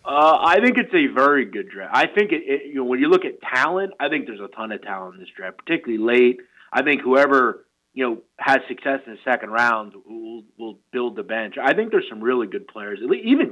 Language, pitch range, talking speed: English, 115-140 Hz, 245 wpm